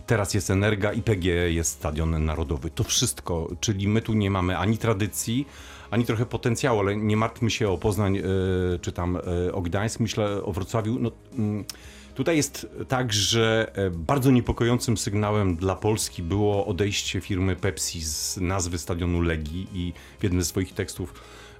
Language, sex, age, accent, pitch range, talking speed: Polish, male, 40-59, native, 90-110 Hz, 160 wpm